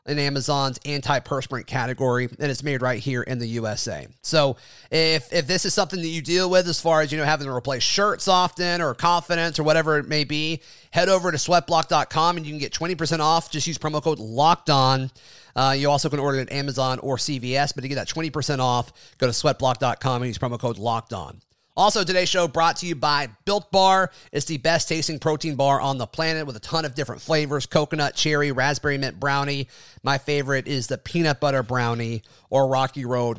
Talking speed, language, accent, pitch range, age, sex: 210 wpm, English, American, 130-160 Hz, 30-49, male